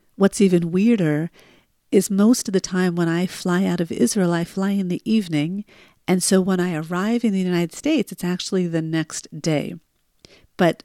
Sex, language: female, English